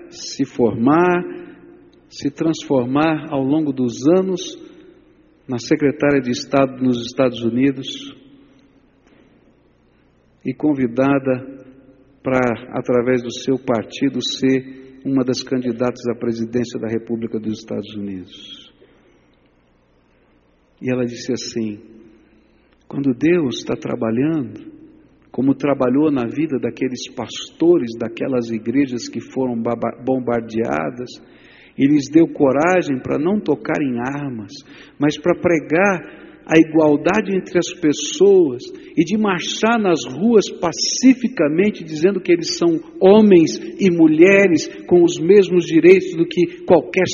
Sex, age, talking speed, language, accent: male, 60-79, 115 wpm, Portuguese, Brazilian